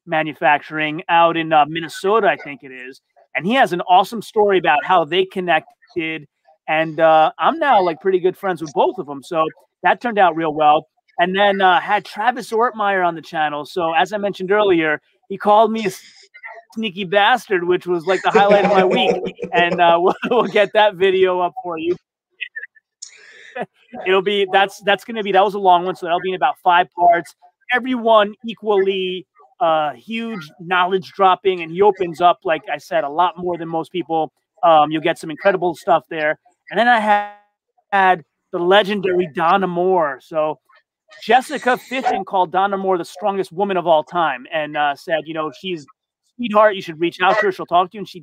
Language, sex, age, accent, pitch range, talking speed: English, male, 30-49, American, 170-215 Hz, 200 wpm